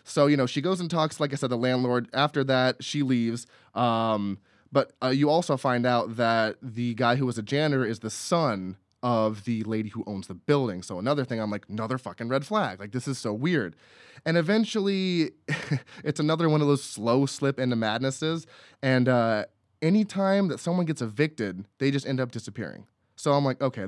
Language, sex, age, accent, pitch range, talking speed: English, male, 20-39, American, 120-160 Hz, 205 wpm